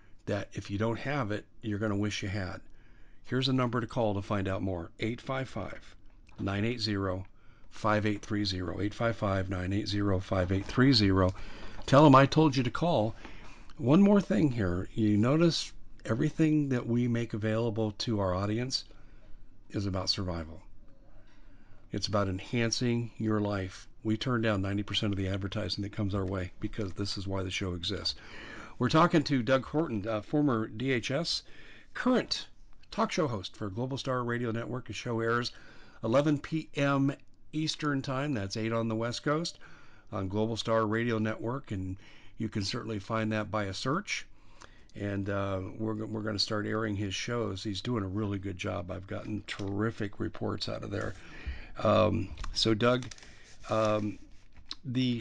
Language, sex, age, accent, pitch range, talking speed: English, male, 50-69, American, 100-120 Hz, 155 wpm